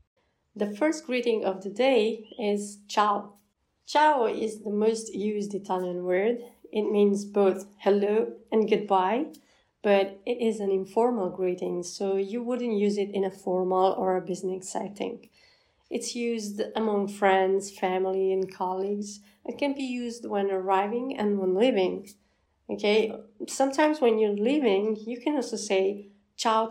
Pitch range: 195-225 Hz